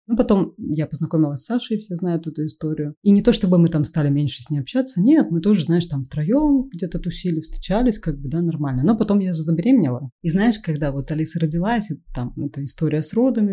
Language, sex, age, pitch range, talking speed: Russian, female, 30-49, 150-180 Hz, 225 wpm